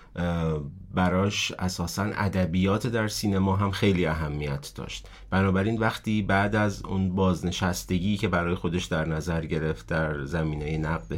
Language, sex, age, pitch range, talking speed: Persian, male, 30-49, 85-100 Hz, 130 wpm